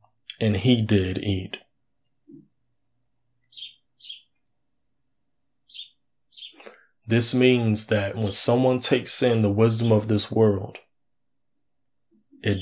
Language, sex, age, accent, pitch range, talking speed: English, male, 20-39, American, 105-130 Hz, 80 wpm